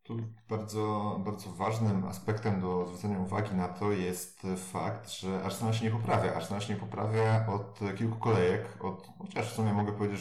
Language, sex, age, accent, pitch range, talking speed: Polish, male, 30-49, native, 95-110 Hz, 175 wpm